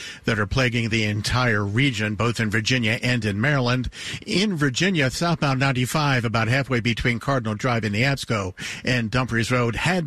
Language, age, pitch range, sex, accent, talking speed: English, 50-69, 110-130 Hz, male, American, 165 wpm